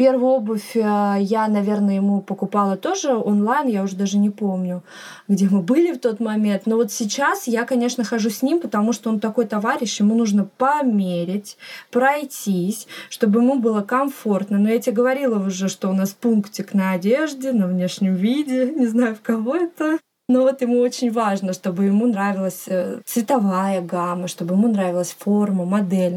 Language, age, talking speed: Russian, 20-39, 170 wpm